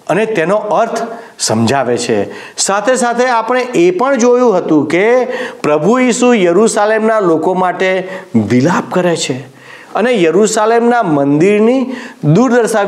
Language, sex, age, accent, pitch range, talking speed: Gujarati, male, 50-69, native, 160-240 Hz, 55 wpm